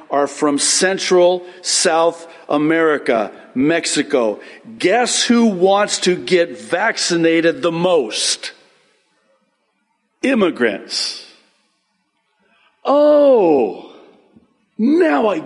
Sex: male